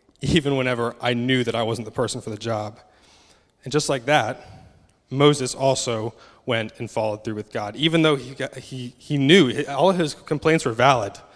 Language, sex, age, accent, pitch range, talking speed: English, male, 20-39, American, 115-135 Hz, 195 wpm